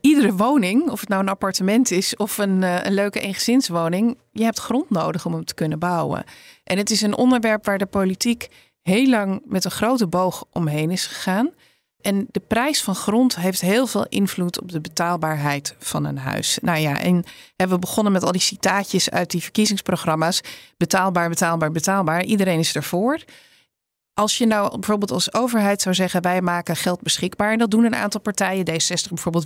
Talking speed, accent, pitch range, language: 190 wpm, Dutch, 170-215 Hz, Dutch